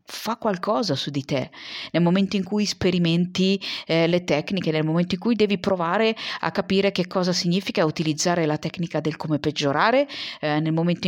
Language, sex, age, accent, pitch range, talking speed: Italian, female, 30-49, native, 160-200 Hz, 180 wpm